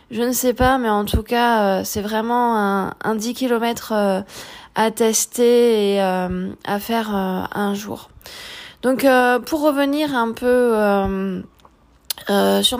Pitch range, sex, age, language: 205-245 Hz, female, 20-39, French